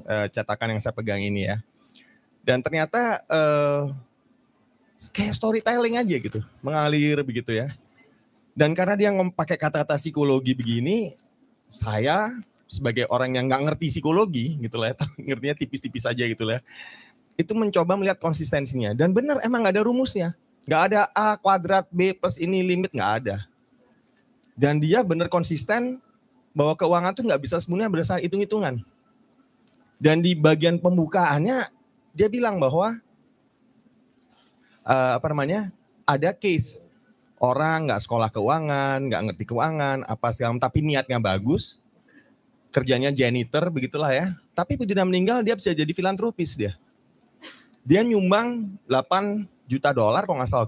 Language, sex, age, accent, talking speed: Indonesian, male, 20-39, native, 135 wpm